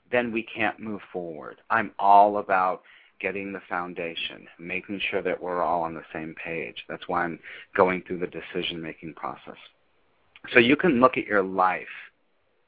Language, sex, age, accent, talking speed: English, male, 40-59, American, 165 wpm